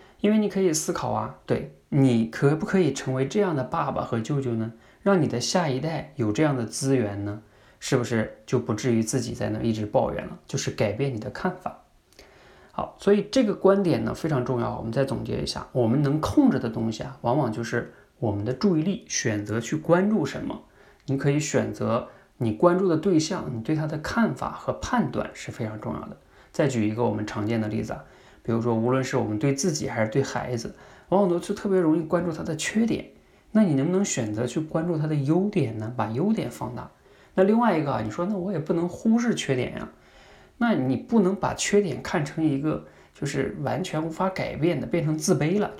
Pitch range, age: 120-180 Hz, 20-39